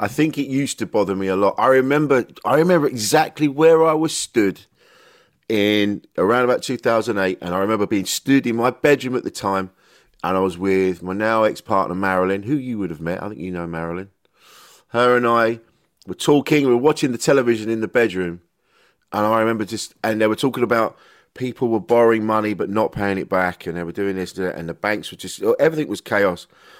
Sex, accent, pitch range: male, British, 100-135 Hz